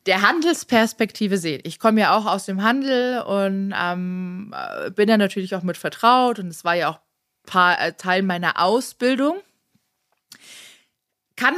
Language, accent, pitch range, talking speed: German, German, 190-245 Hz, 145 wpm